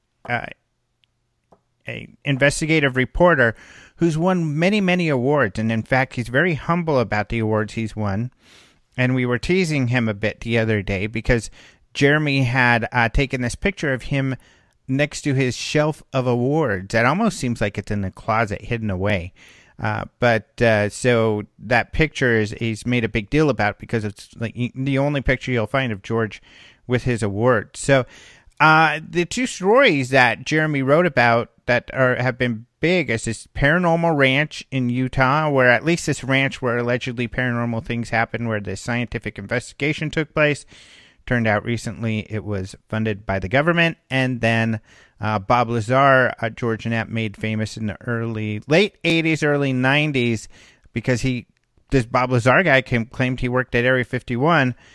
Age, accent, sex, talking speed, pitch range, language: 40-59, American, male, 170 wpm, 115-140 Hz, English